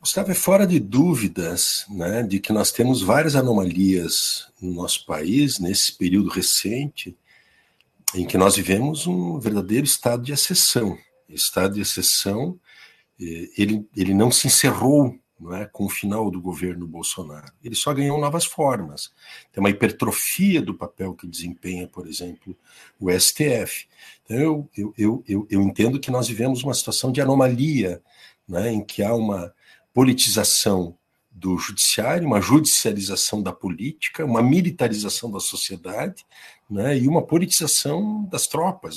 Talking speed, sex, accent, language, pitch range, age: 150 wpm, male, Brazilian, Portuguese, 100-150 Hz, 60-79